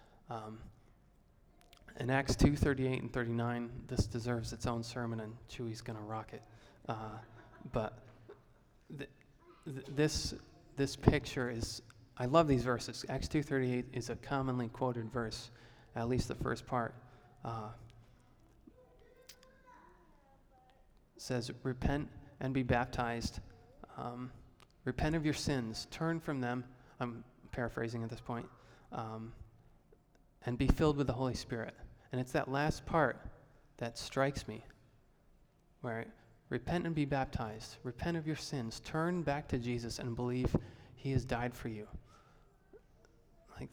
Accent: American